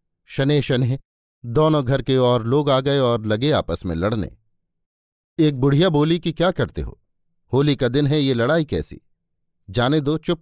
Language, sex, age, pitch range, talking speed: Hindi, male, 50-69, 110-150 Hz, 180 wpm